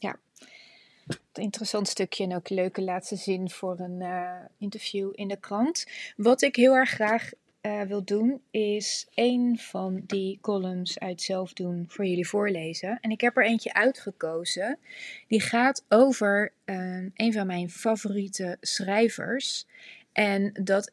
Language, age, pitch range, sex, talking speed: Dutch, 30-49, 190-230 Hz, female, 140 wpm